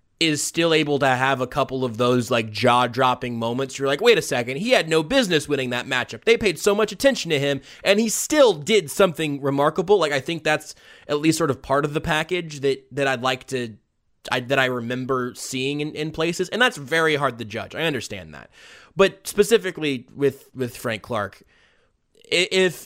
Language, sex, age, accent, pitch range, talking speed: English, male, 20-39, American, 130-185 Hz, 205 wpm